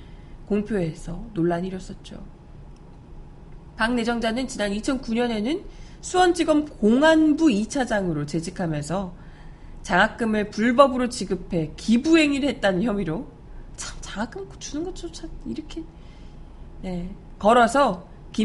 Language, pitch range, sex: Korean, 185-260 Hz, female